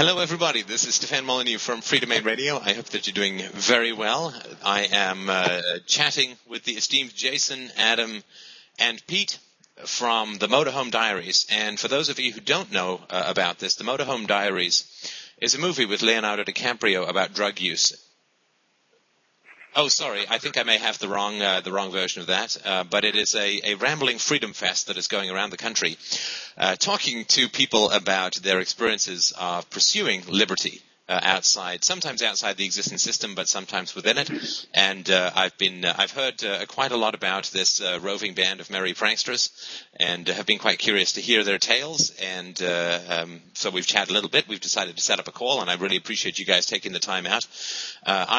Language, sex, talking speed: English, male, 200 wpm